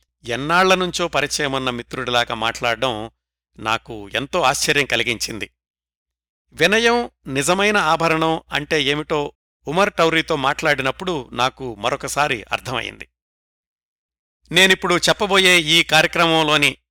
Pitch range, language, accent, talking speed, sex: 110-160 Hz, Telugu, native, 90 wpm, male